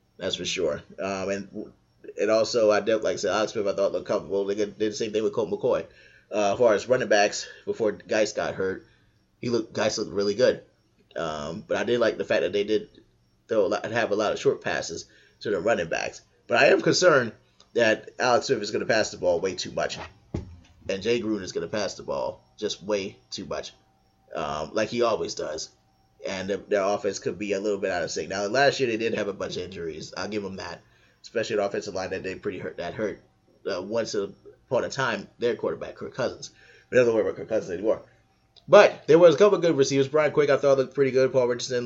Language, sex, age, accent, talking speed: English, male, 20-39, American, 240 wpm